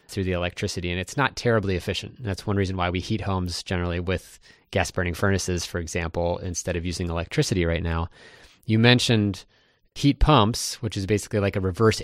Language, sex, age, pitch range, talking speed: English, male, 30-49, 90-115 Hz, 185 wpm